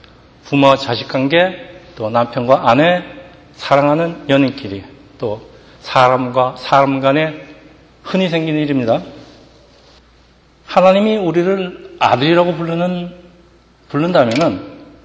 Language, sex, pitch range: Korean, male, 125-165 Hz